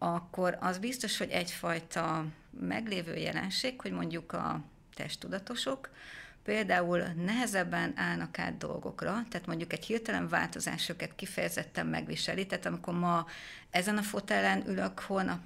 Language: Hungarian